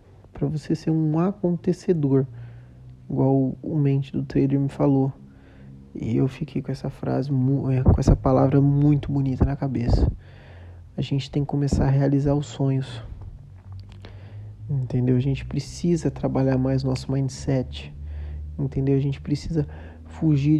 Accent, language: Brazilian, Portuguese